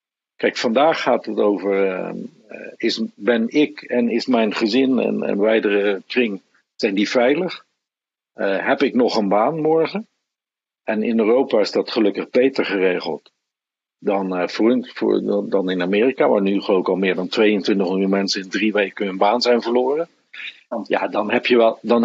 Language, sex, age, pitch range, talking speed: Dutch, male, 50-69, 100-125 Hz, 170 wpm